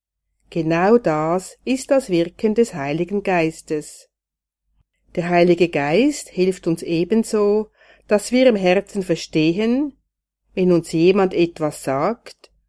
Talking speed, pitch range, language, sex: 115 wpm, 155-220 Hz, German, female